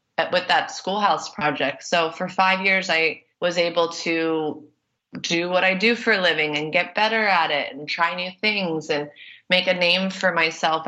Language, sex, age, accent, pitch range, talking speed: English, female, 30-49, American, 165-195 Hz, 190 wpm